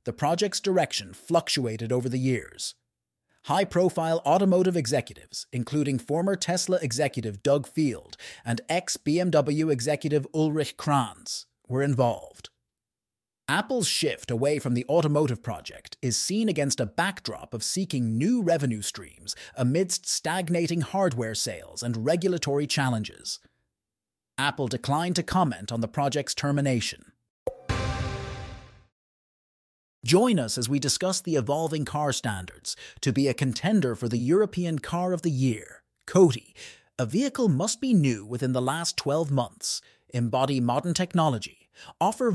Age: 30-49